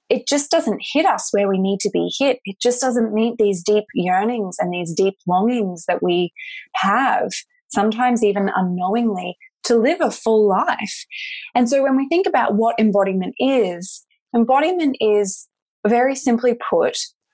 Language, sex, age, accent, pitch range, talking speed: English, female, 20-39, Australian, 190-250 Hz, 165 wpm